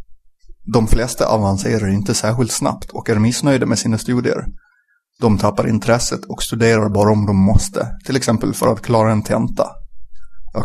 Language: Swedish